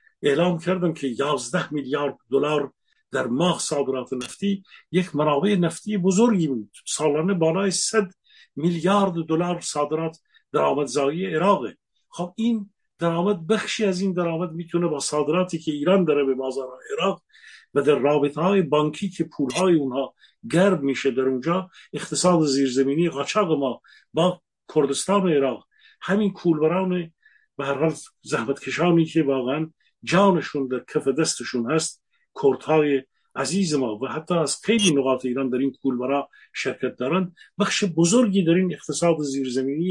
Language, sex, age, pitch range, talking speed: Persian, male, 50-69, 140-185 Hz, 135 wpm